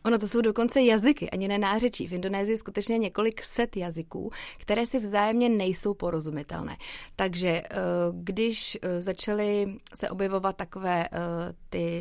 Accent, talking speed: native, 130 wpm